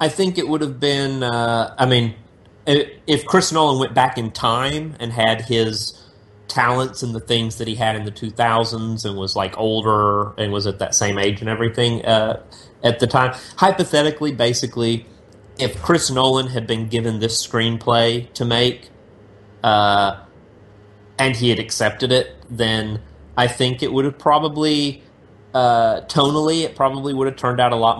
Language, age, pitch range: English, 30-49, 105-120 Hz